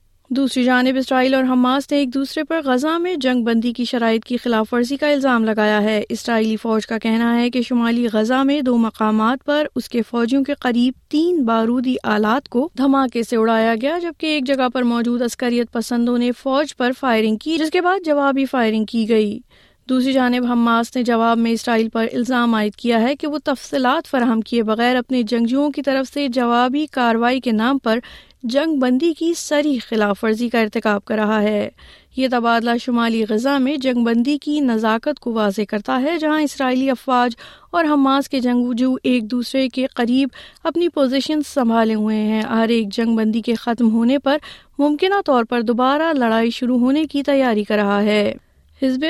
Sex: female